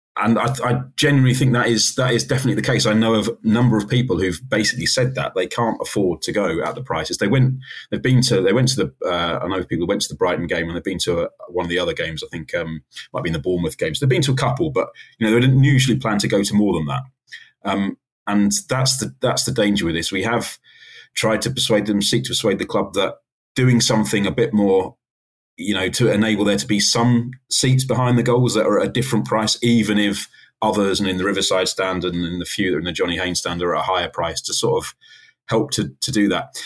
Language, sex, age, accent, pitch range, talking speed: English, male, 30-49, British, 100-130 Hz, 265 wpm